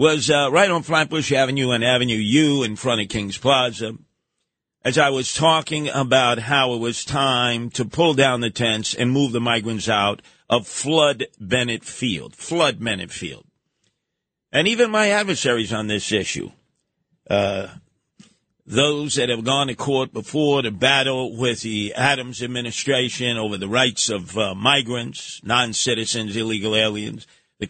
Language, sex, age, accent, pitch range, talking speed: English, male, 50-69, American, 115-140 Hz, 155 wpm